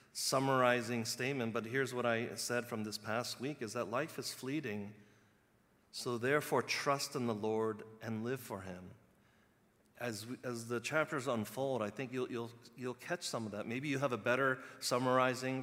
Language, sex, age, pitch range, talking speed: English, male, 40-59, 105-135 Hz, 175 wpm